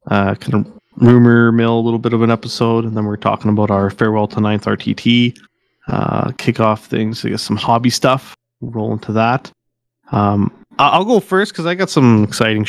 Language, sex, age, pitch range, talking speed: English, male, 30-49, 110-125 Hz, 200 wpm